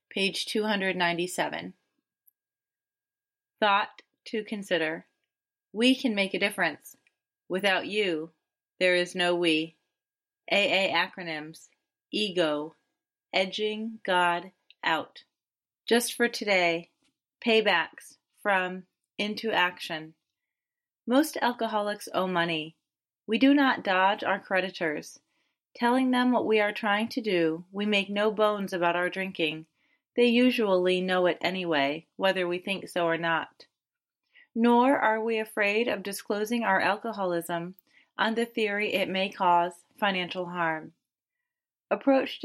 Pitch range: 180-230 Hz